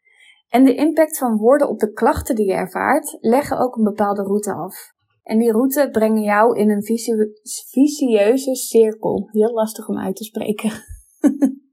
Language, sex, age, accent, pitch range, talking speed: Dutch, female, 20-39, Dutch, 215-270 Hz, 165 wpm